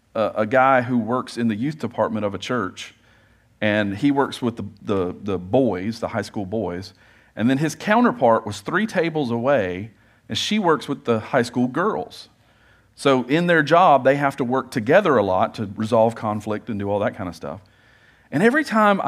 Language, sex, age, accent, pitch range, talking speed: English, male, 40-59, American, 110-165 Hz, 195 wpm